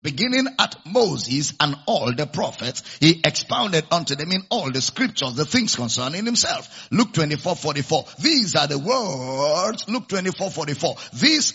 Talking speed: 155 wpm